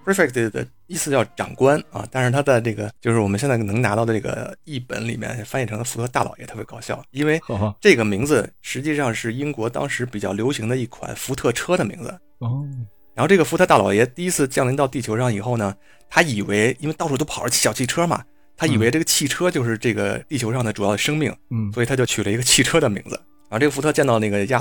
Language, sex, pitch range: Chinese, male, 105-135 Hz